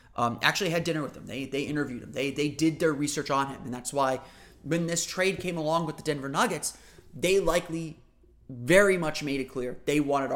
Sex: male